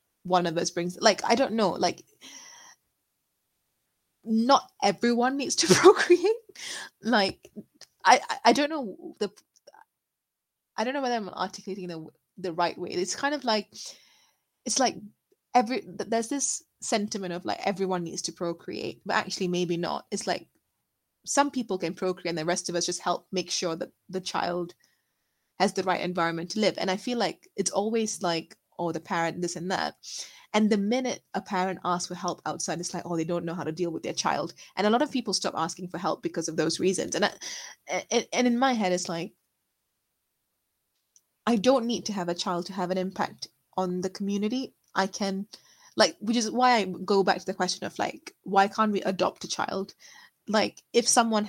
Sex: female